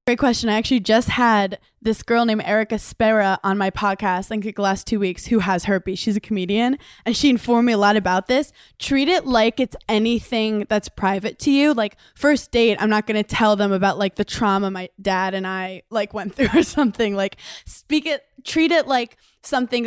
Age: 20-39